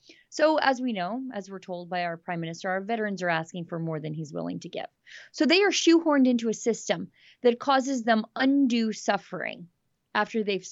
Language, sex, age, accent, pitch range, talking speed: English, female, 30-49, American, 190-275 Hz, 200 wpm